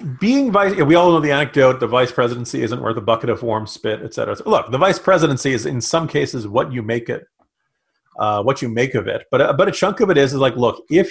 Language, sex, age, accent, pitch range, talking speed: English, male, 40-59, American, 115-155 Hz, 265 wpm